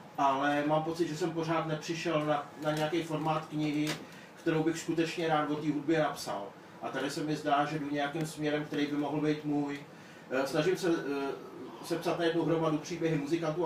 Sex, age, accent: male, 40-59, native